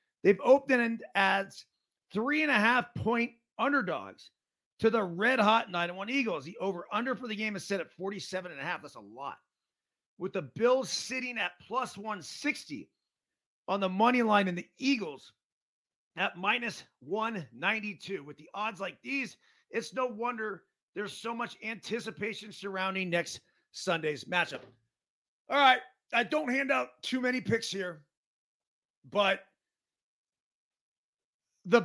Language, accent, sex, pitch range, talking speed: English, American, male, 185-240 Hz, 135 wpm